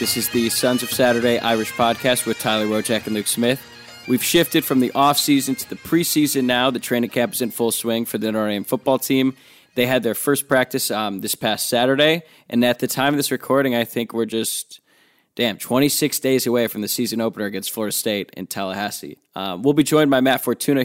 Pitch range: 110-130 Hz